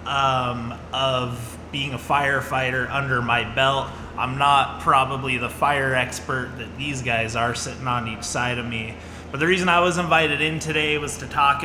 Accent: American